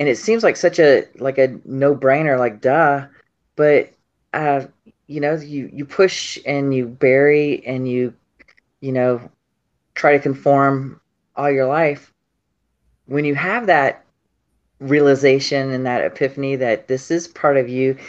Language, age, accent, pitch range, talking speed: English, 30-49, American, 130-150 Hz, 150 wpm